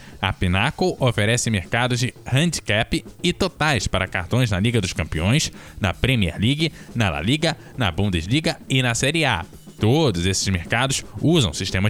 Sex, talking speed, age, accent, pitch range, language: male, 155 wpm, 10-29, Brazilian, 100-135 Hz, Portuguese